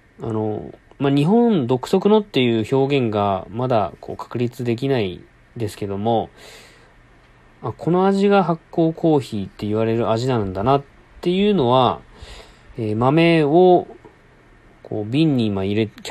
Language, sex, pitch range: Japanese, male, 110-160 Hz